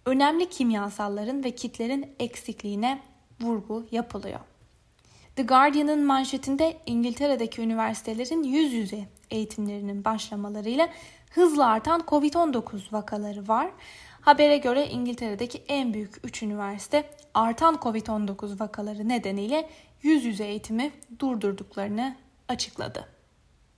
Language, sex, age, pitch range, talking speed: Turkish, female, 10-29, 220-285 Hz, 95 wpm